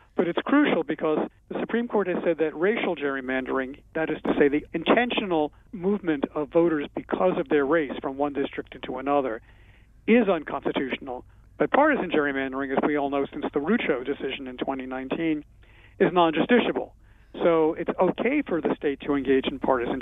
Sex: male